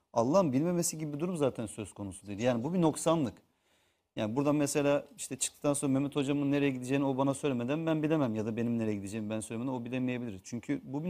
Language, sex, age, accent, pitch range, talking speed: Turkish, male, 40-59, native, 110-150 Hz, 215 wpm